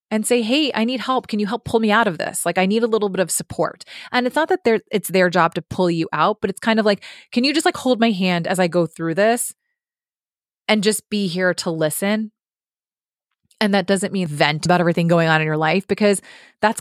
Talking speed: 255 wpm